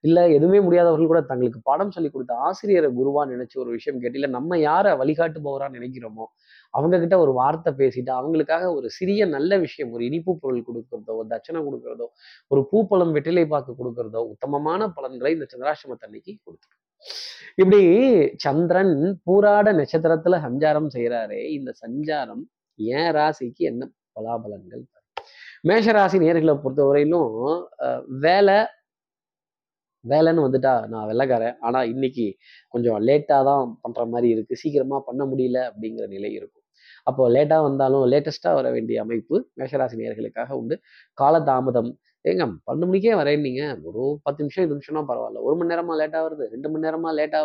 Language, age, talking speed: Tamil, 20-39, 135 wpm